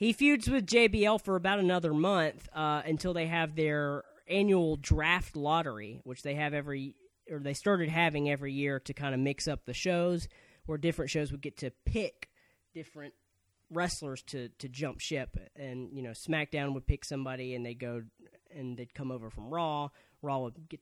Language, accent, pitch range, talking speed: English, American, 130-175 Hz, 185 wpm